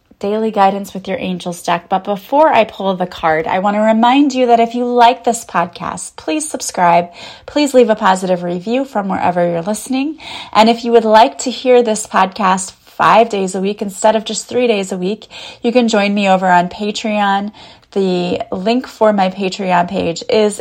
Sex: female